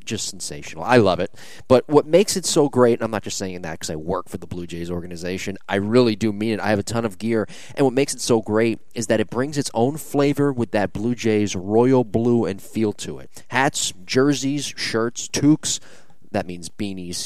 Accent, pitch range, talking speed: American, 95-125 Hz, 230 wpm